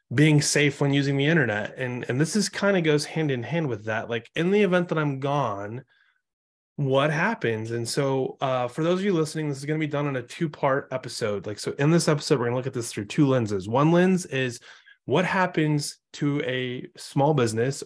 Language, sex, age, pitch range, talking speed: English, male, 20-39, 120-160 Hz, 230 wpm